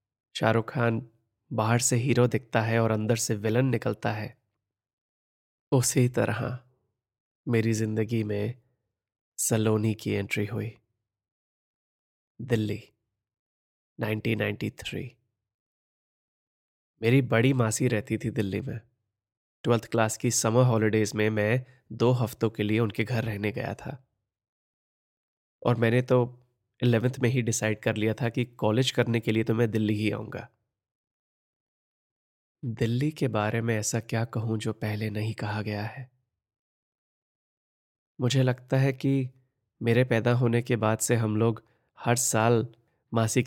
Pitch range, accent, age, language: 110-125 Hz, native, 20-39, Hindi